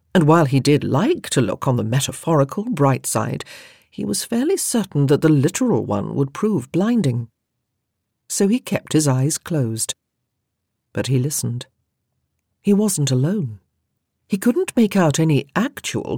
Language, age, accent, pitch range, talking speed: English, 50-69, British, 125-185 Hz, 150 wpm